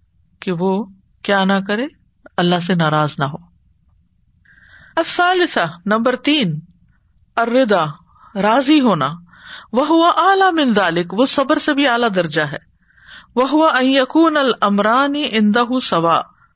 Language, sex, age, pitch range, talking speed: Urdu, female, 50-69, 185-260 Hz, 90 wpm